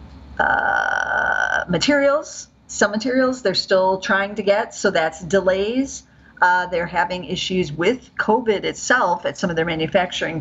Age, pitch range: 40-59, 165-205 Hz